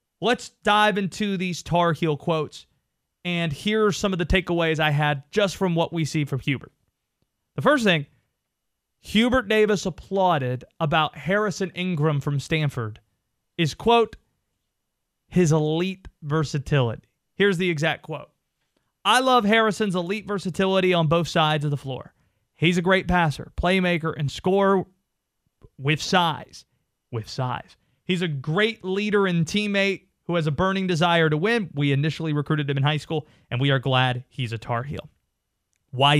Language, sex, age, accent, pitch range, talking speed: English, male, 30-49, American, 150-210 Hz, 155 wpm